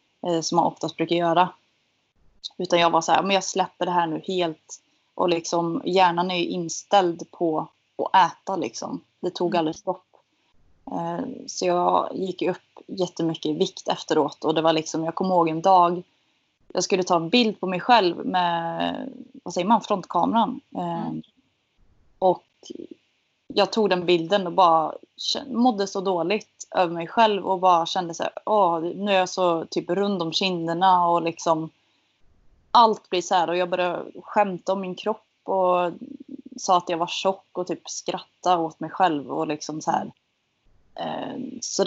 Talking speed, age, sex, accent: 165 wpm, 20-39, female, native